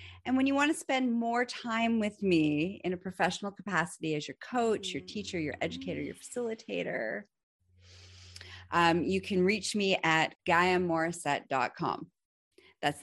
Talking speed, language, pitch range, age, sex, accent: 145 wpm, English, 155-235 Hz, 30-49, female, American